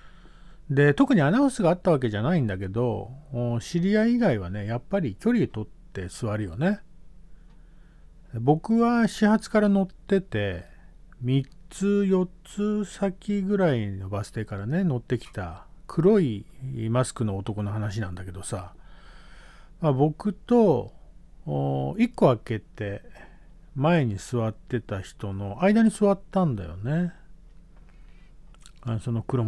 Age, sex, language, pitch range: 50-69, male, Japanese, 115-170 Hz